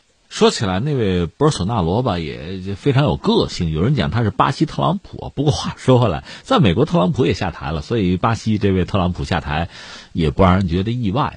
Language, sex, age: Chinese, male, 50-69